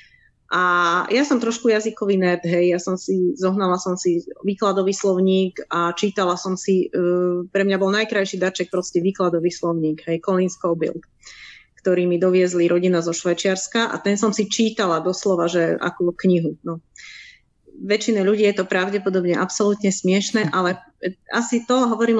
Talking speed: 155 wpm